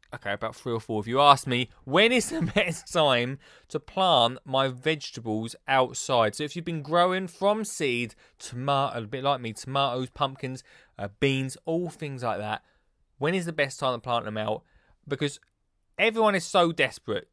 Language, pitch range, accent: English, 125-190 Hz, British